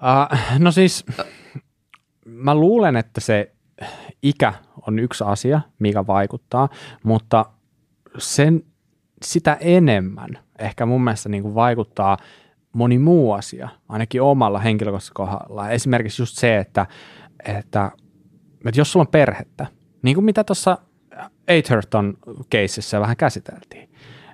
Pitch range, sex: 105-140 Hz, male